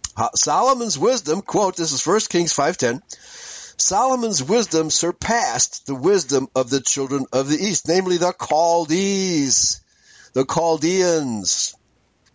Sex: male